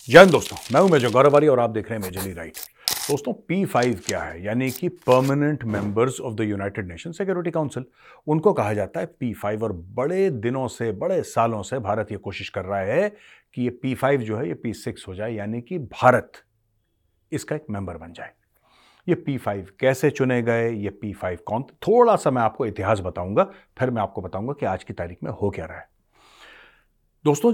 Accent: native